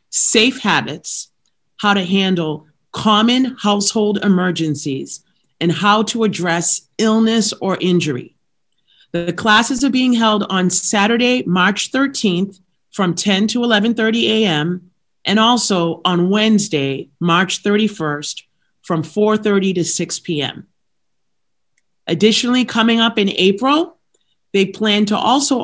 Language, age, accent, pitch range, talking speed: English, 40-59, American, 170-220 Hz, 120 wpm